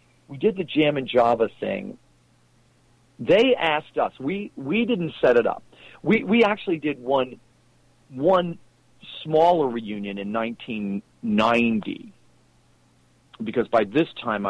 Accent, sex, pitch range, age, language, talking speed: American, male, 100-120 Hz, 50-69, English, 125 wpm